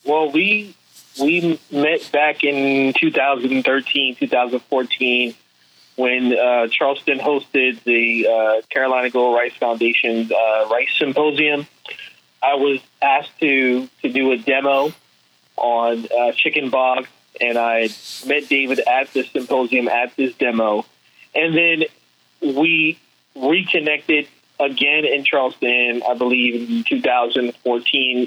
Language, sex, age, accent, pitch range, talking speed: English, male, 30-49, American, 120-145 Hz, 115 wpm